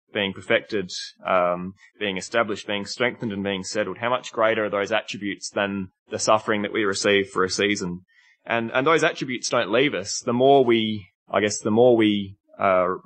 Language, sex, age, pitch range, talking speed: English, male, 20-39, 100-115 Hz, 190 wpm